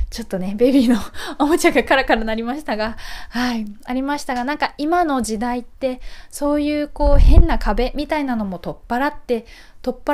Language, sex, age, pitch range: Japanese, female, 20-39, 215-290 Hz